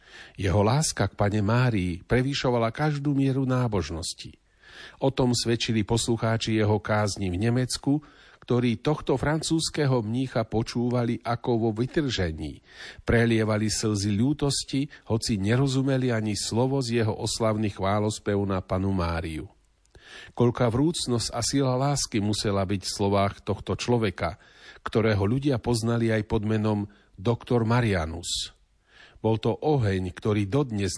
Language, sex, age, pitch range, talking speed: Slovak, male, 40-59, 100-125 Hz, 120 wpm